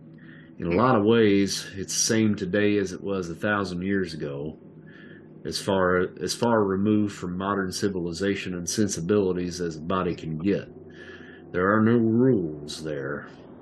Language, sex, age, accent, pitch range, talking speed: English, male, 50-69, American, 90-110 Hz, 155 wpm